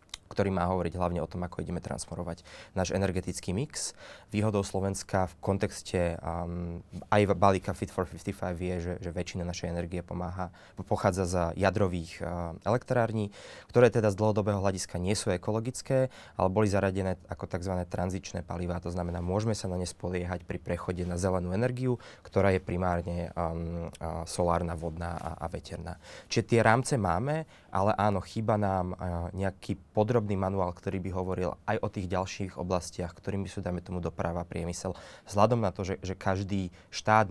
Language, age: Slovak, 20-39